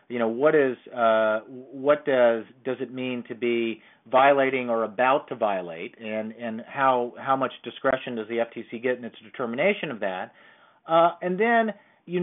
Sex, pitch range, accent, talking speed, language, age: male, 125-150 Hz, American, 175 wpm, English, 40-59